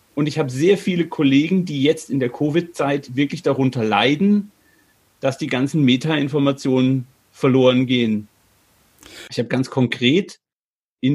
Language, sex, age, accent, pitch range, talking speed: German, male, 40-59, German, 125-155 Hz, 135 wpm